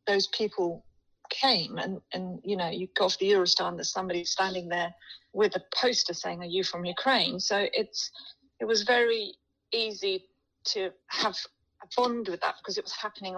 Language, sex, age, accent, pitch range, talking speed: English, female, 40-59, British, 175-240 Hz, 185 wpm